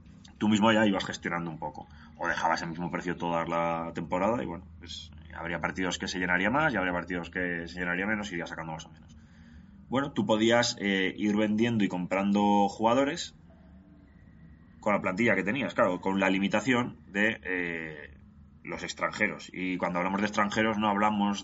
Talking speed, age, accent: 185 wpm, 20-39, Spanish